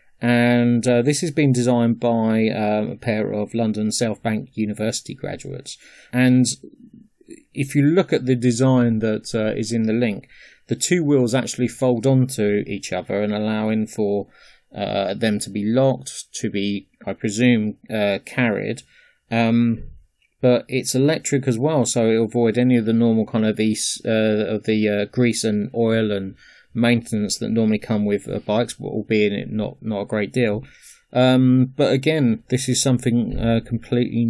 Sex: male